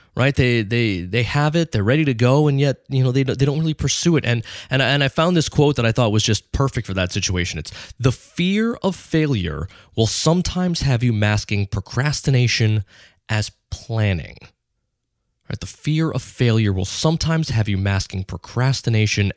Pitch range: 105-145 Hz